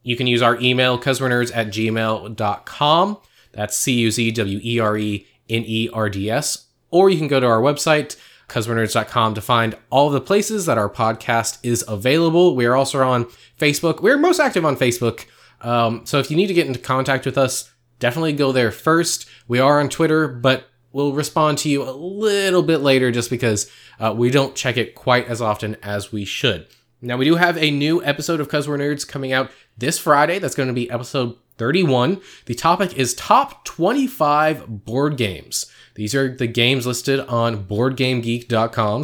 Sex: male